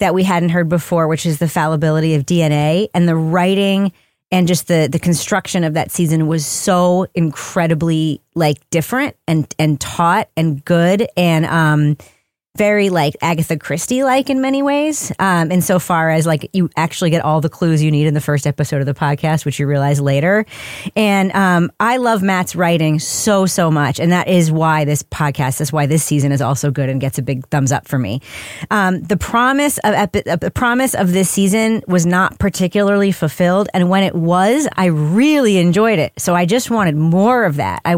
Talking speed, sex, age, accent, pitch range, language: 195 wpm, female, 30-49, American, 155-190 Hz, English